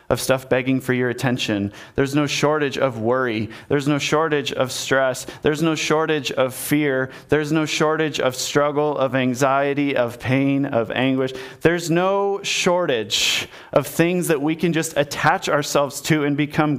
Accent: American